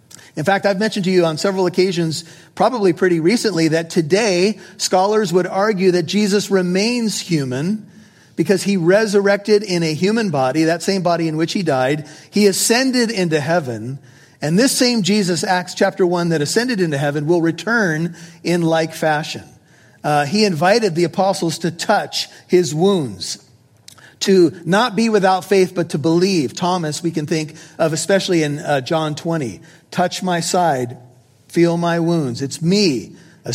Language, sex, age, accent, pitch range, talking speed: English, male, 40-59, American, 160-200 Hz, 165 wpm